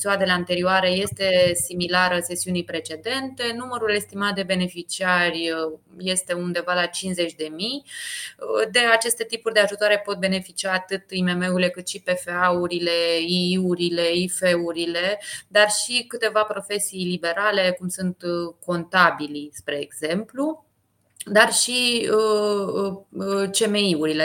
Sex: female